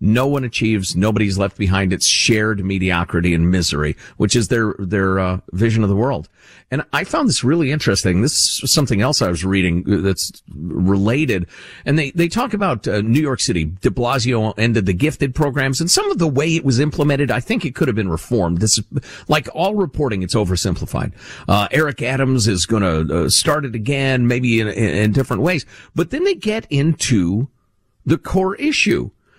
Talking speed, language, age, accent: 195 wpm, English, 50-69, American